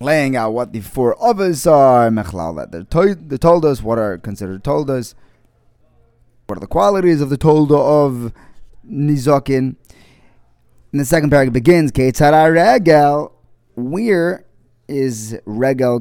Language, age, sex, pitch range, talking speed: English, 20-39, male, 105-140 Hz, 135 wpm